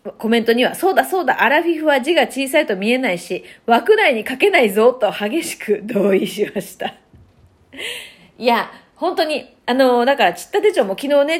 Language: Japanese